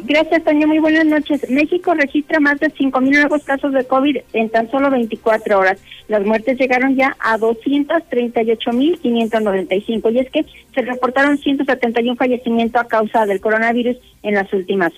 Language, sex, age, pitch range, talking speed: Spanish, female, 40-59, 215-275 Hz, 155 wpm